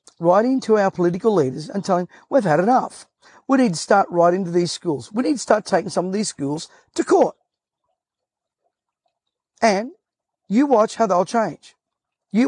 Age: 50-69